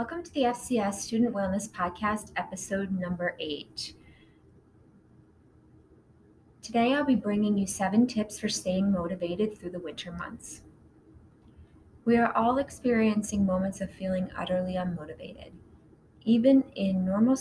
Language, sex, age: English, female, 20-39